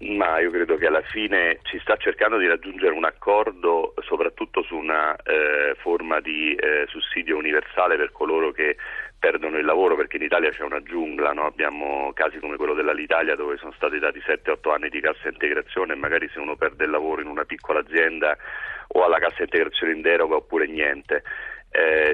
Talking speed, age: 185 wpm, 40-59